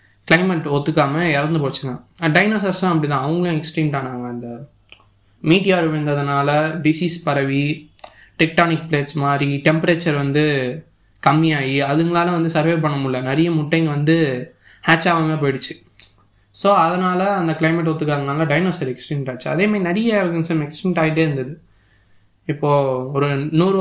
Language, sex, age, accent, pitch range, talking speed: Tamil, male, 20-39, native, 130-165 Hz, 125 wpm